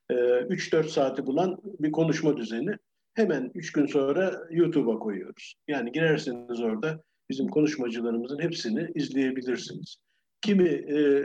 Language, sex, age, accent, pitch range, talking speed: Turkish, male, 50-69, native, 130-180 Hz, 100 wpm